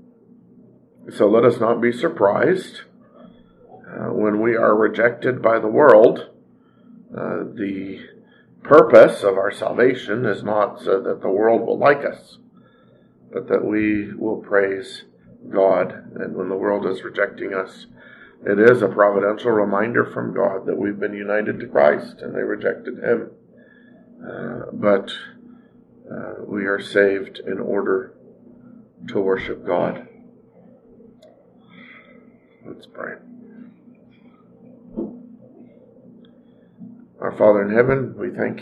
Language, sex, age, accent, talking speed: English, male, 50-69, American, 120 wpm